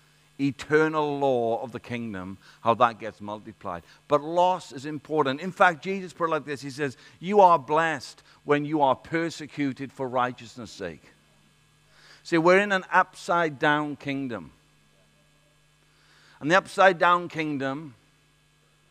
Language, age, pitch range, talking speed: English, 50-69, 110-150 Hz, 135 wpm